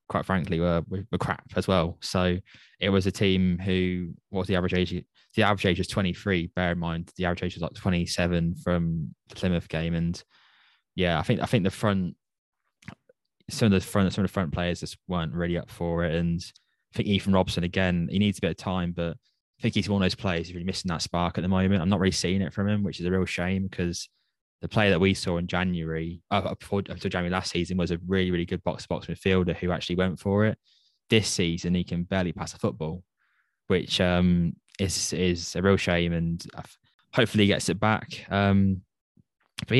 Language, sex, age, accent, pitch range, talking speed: English, male, 10-29, British, 85-100 Hz, 225 wpm